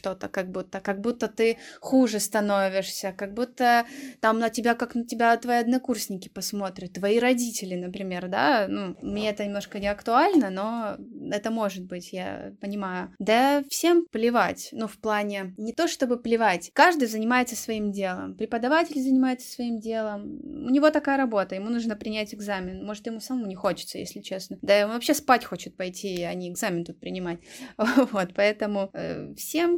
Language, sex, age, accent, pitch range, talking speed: Russian, female, 20-39, native, 190-245 Hz, 165 wpm